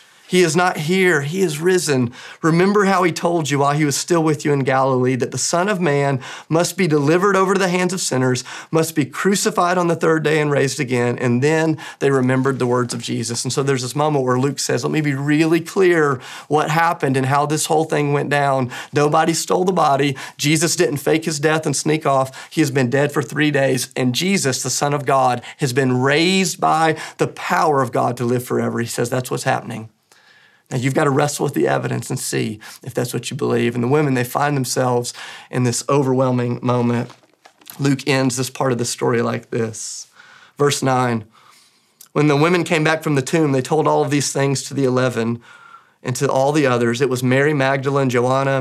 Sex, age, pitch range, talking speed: male, 30-49, 130-160 Hz, 220 wpm